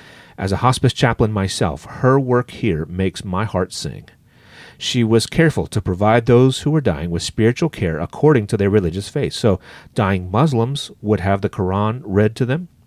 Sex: male